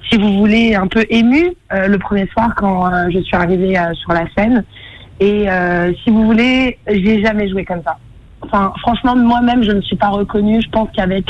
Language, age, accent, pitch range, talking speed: French, 20-39, French, 190-225 Hz, 220 wpm